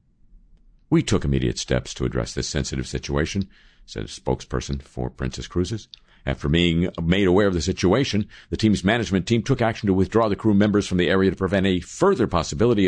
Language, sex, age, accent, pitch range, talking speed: English, male, 50-69, American, 75-110 Hz, 190 wpm